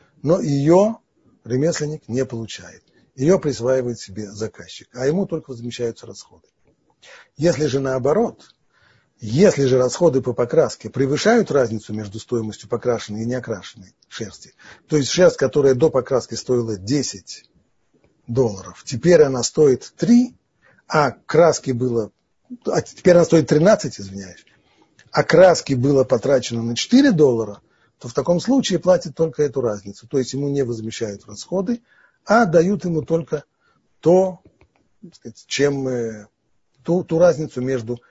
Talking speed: 130 wpm